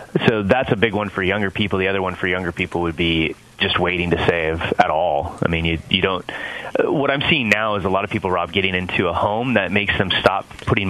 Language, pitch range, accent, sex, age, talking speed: English, 90-110 Hz, American, male, 30-49, 260 wpm